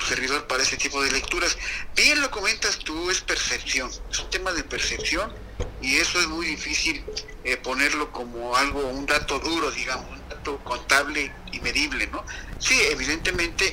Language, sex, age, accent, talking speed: Spanish, male, 50-69, Mexican, 165 wpm